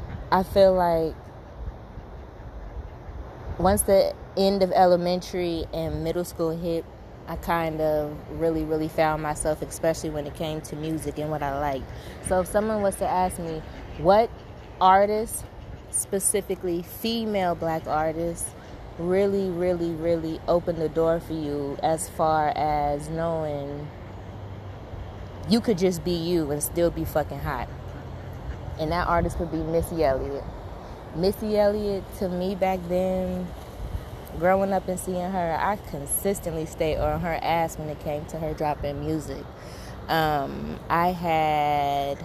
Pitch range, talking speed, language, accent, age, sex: 145-185 Hz, 140 wpm, English, American, 20-39, female